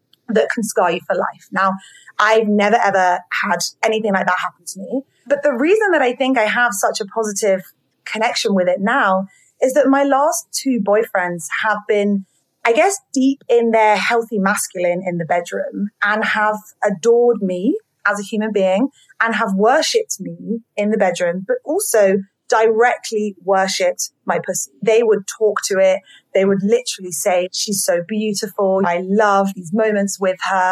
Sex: female